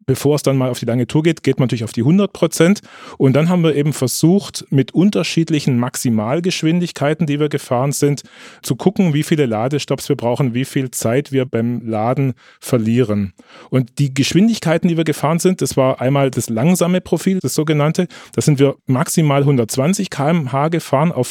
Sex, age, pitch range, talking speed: male, 30-49, 125-155 Hz, 185 wpm